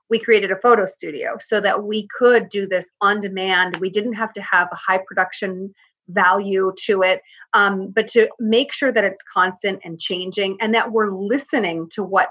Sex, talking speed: female, 195 wpm